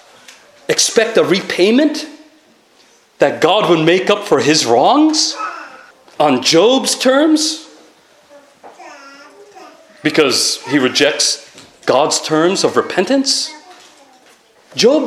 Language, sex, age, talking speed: English, male, 40-59, 90 wpm